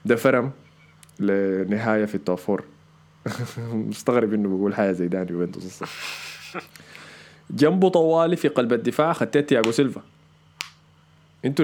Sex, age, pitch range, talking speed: male, 20-39, 95-140 Hz, 110 wpm